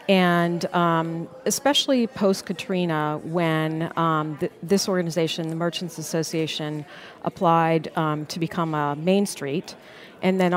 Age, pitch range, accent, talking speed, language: 40-59, 160-190 Hz, American, 120 wpm, English